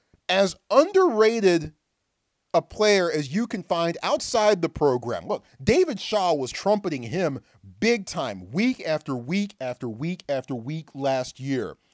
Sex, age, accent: male, 40-59, American